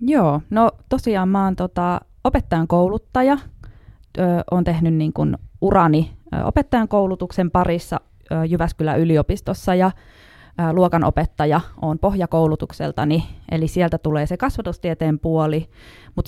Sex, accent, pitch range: female, native, 155-185 Hz